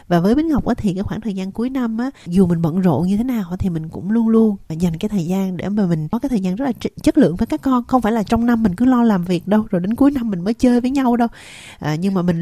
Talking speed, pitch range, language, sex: 320 wpm, 175-235 Hz, Vietnamese, female